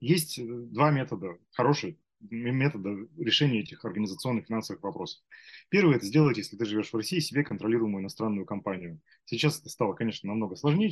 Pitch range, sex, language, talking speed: 105-145 Hz, male, Russian, 160 wpm